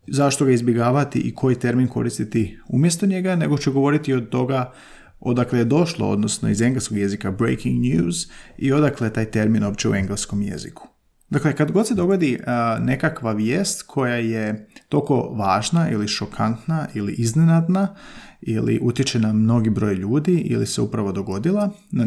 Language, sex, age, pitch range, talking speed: Croatian, male, 30-49, 110-150 Hz, 155 wpm